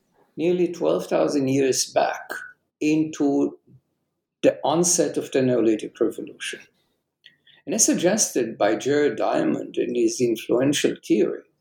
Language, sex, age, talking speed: English, male, 60-79, 110 wpm